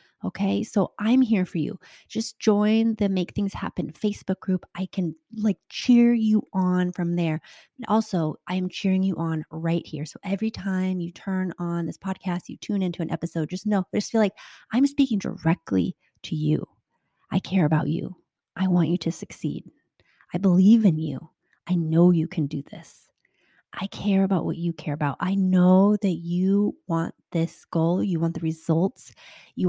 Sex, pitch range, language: female, 170-210 Hz, English